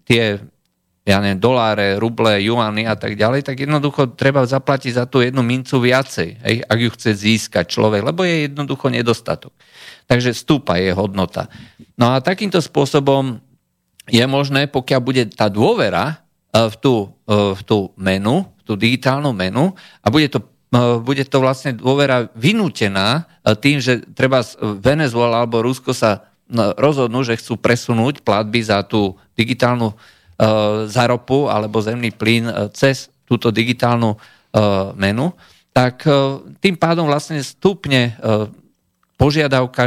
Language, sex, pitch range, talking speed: Slovak, male, 110-135 Hz, 130 wpm